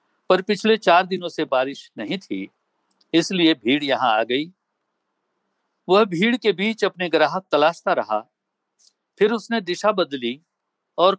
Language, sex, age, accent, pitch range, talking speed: Hindi, male, 60-79, native, 140-195 Hz, 140 wpm